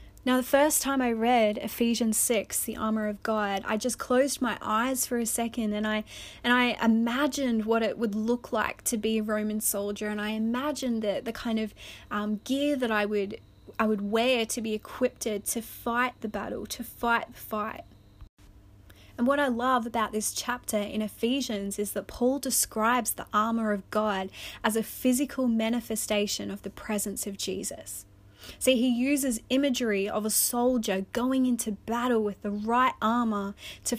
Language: English